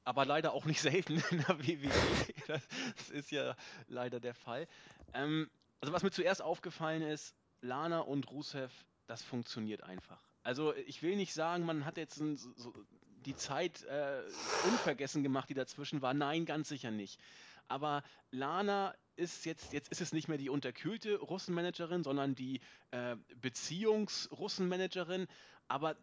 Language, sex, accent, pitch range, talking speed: German, male, German, 130-170 Hz, 150 wpm